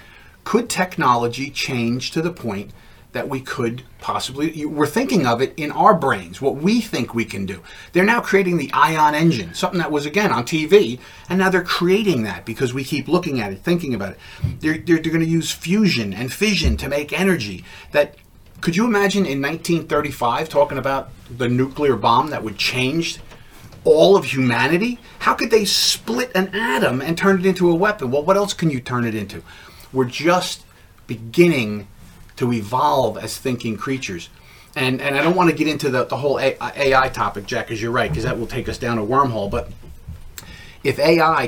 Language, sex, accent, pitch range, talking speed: English, male, American, 115-170 Hz, 190 wpm